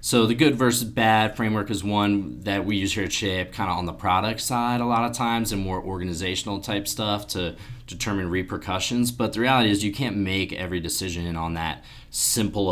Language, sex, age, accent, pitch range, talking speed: English, male, 20-39, American, 90-110 Hz, 210 wpm